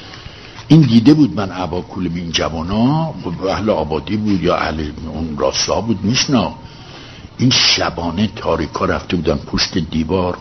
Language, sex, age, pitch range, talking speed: Persian, male, 60-79, 90-115 Hz, 140 wpm